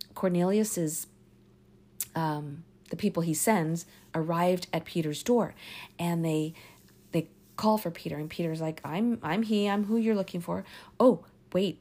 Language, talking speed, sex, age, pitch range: English, 145 wpm, female, 40-59, 160-210 Hz